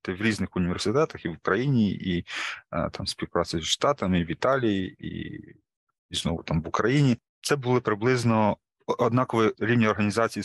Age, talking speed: 30-49, 150 wpm